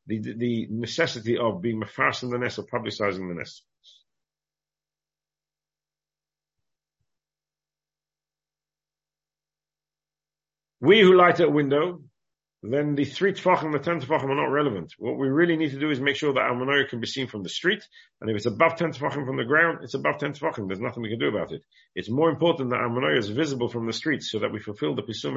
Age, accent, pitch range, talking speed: 50-69, British, 120-155 Hz, 190 wpm